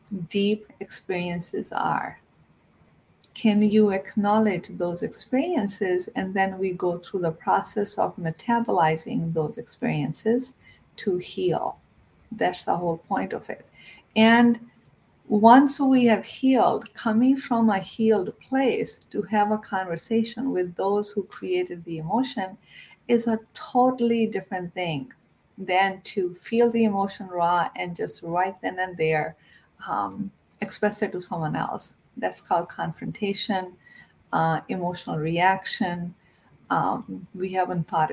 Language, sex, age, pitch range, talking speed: English, female, 50-69, 175-225 Hz, 125 wpm